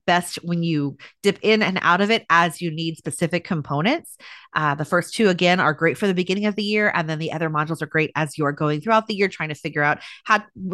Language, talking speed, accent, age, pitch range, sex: English, 250 wpm, American, 30-49, 155-210 Hz, female